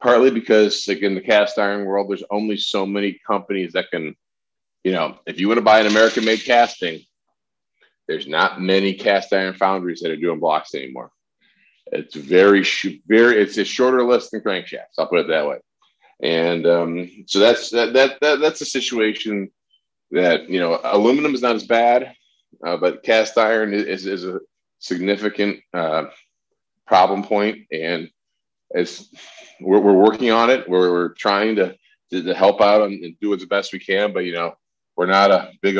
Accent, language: American, English